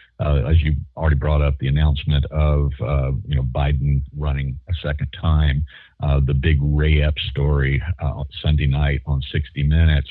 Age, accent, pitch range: 50-69, American, 75-90 Hz